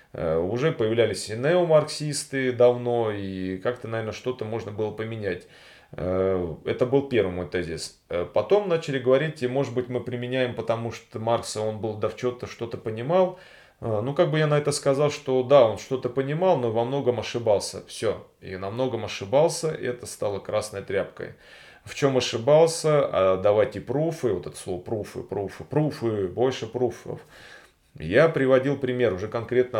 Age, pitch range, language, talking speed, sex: 30-49, 105-140 Hz, Russian, 160 wpm, male